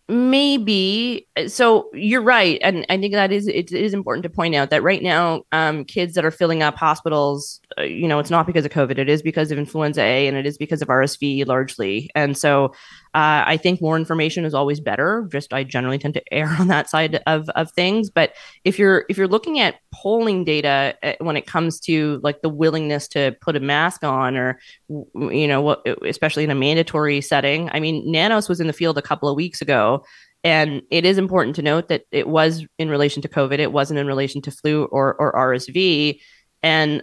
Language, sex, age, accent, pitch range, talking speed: English, female, 20-39, American, 150-180 Hz, 215 wpm